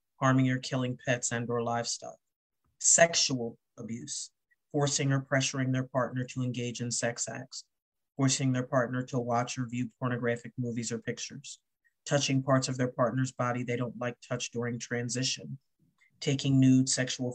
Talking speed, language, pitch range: 155 wpm, English, 120-130 Hz